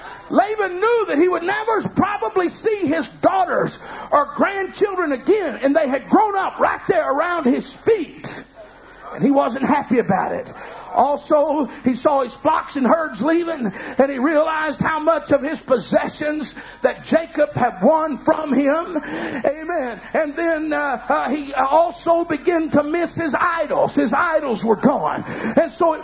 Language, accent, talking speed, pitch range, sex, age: English, American, 160 wpm, 285-355 Hz, male, 50-69